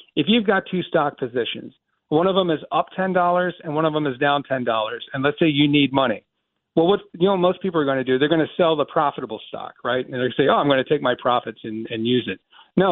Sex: male